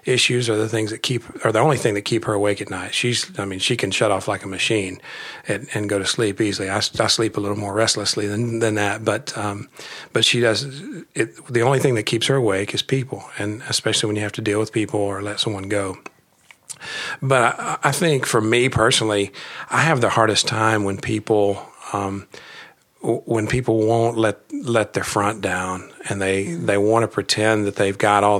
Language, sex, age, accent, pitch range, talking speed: English, male, 40-59, American, 100-115 Hz, 220 wpm